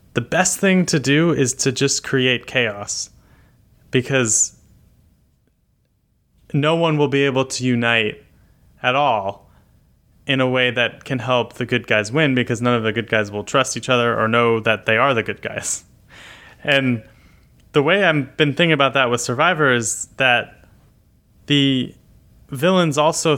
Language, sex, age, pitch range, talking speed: English, male, 20-39, 115-145 Hz, 160 wpm